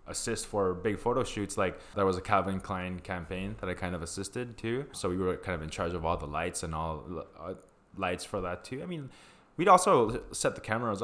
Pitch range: 85-105 Hz